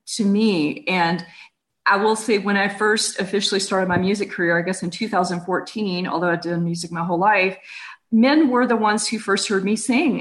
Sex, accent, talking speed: female, American, 205 wpm